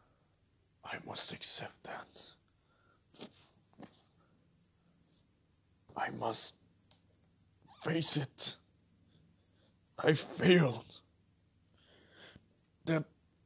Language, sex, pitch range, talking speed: English, male, 90-125 Hz, 50 wpm